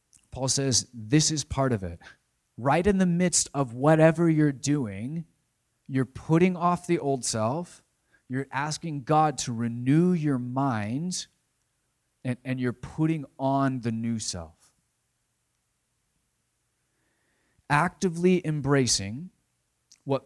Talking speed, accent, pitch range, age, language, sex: 115 wpm, American, 120-160 Hz, 30-49, English, male